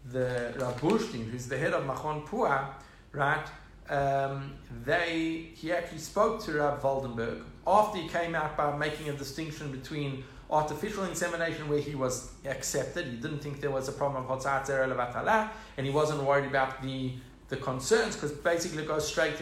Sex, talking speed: male, 165 wpm